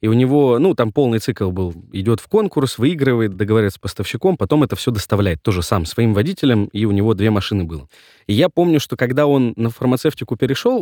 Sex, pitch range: male, 105-135 Hz